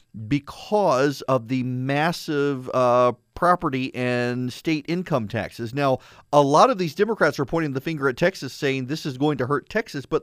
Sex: male